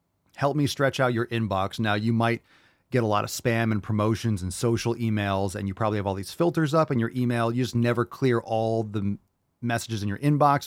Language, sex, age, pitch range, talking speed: English, male, 30-49, 100-130 Hz, 225 wpm